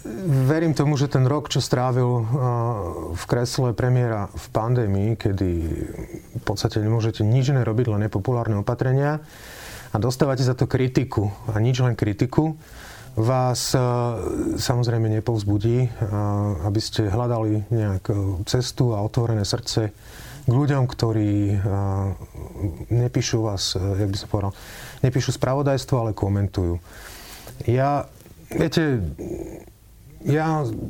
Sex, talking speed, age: male, 110 wpm, 30-49